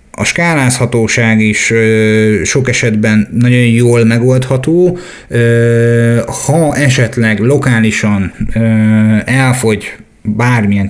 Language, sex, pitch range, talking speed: Hungarian, male, 105-125 Hz, 70 wpm